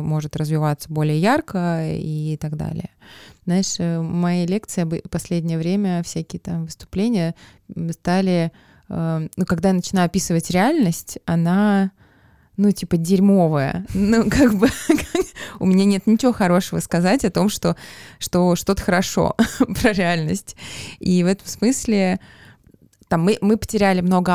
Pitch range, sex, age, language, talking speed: 165-190 Hz, female, 20-39, Russian, 130 wpm